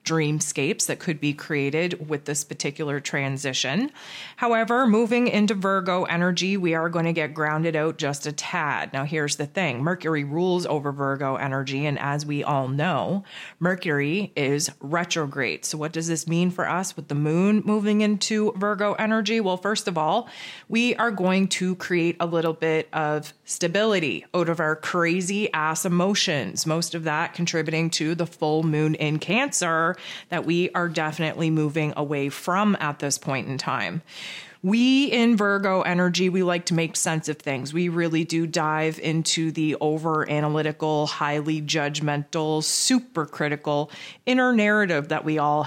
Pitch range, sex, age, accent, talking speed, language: 150-180 Hz, female, 30-49, American, 165 wpm, English